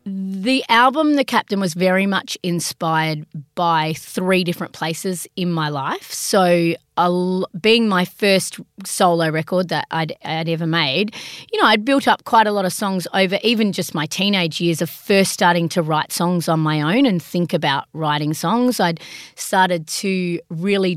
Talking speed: 175 wpm